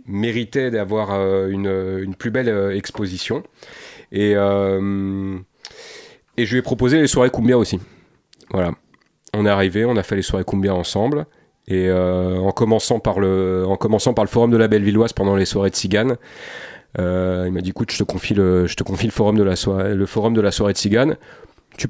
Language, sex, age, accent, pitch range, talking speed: French, male, 30-49, French, 95-115 Hz, 195 wpm